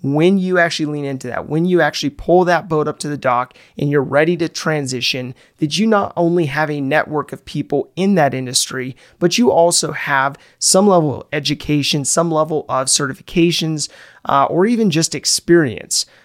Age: 30-49